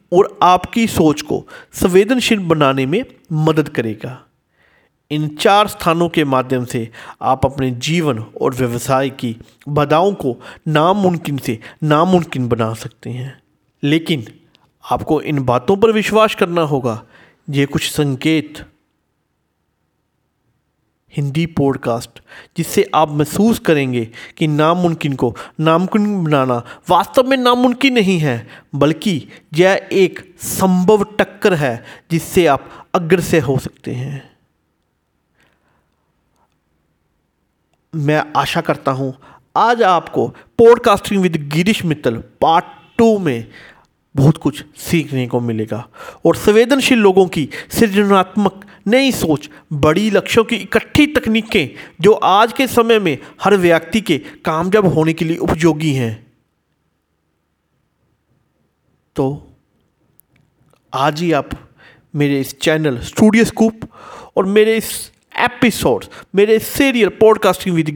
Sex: male